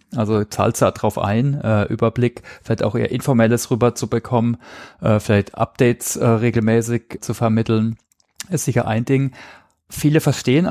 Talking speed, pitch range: 145 wpm, 110-125 Hz